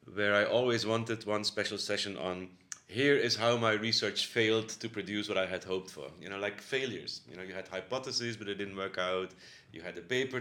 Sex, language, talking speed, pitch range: male, English, 225 wpm, 100-115 Hz